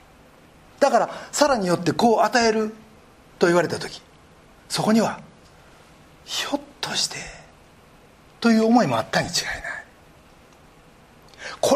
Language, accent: Japanese, native